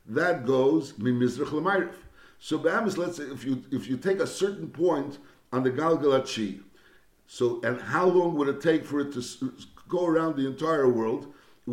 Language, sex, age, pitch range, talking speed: English, male, 60-79, 135-165 Hz, 170 wpm